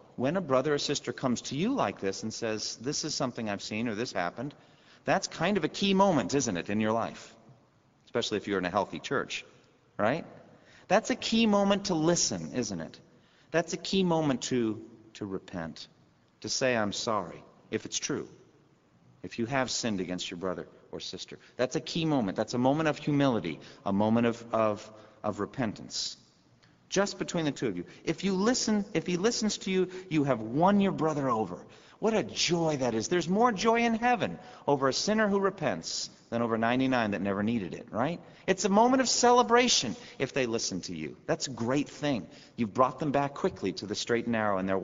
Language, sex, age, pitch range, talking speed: English, male, 40-59, 110-175 Hz, 205 wpm